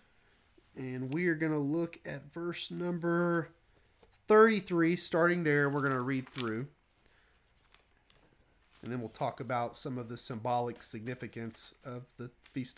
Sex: male